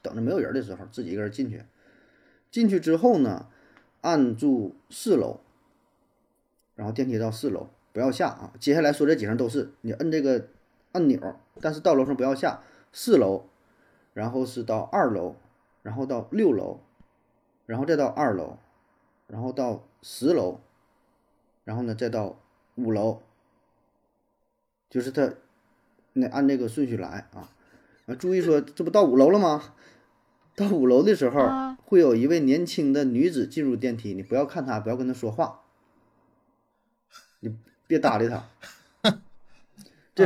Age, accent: 30-49, native